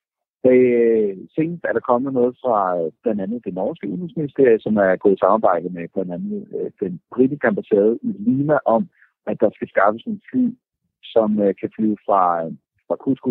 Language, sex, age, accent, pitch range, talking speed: Danish, male, 50-69, native, 105-155 Hz, 155 wpm